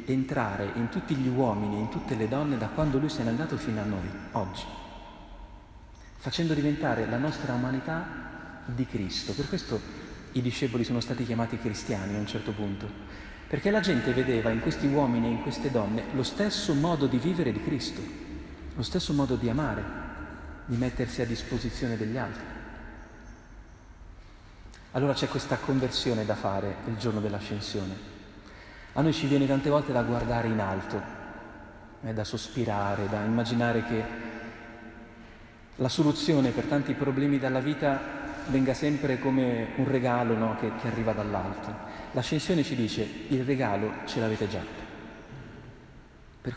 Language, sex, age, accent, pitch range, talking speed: Italian, male, 40-59, native, 105-135 Hz, 150 wpm